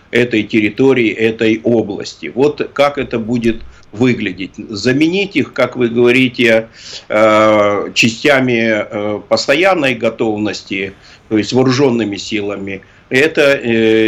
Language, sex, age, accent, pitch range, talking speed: Russian, male, 50-69, native, 115-140 Hz, 95 wpm